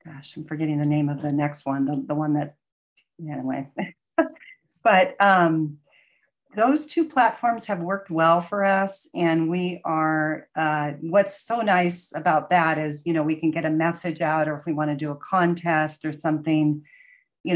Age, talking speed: 40-59, 180 wpm